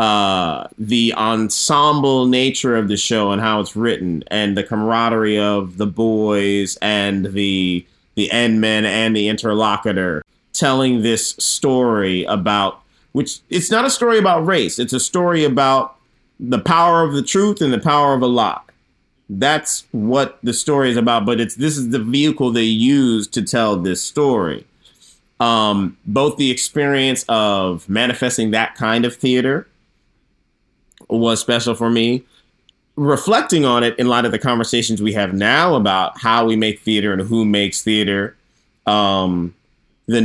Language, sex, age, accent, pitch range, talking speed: English, male, 30-49, American, 105-135 Hz, 155 wpm